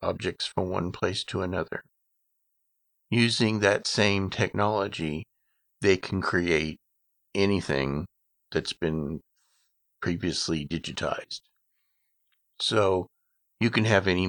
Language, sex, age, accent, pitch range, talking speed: English, male, 50-69, American, 85-100 Hz, 95 wpm